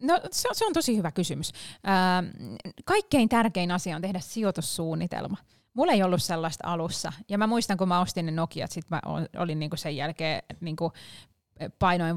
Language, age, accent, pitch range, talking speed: Finnish, 20-39, native, 160-195 Hz, 190 wpm